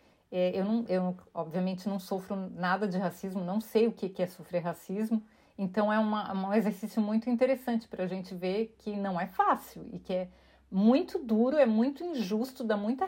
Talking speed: 180 wpm